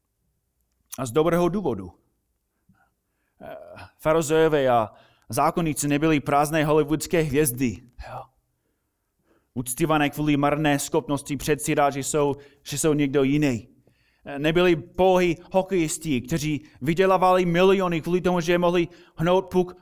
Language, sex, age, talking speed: Czech, male, 30-49, 105 wpm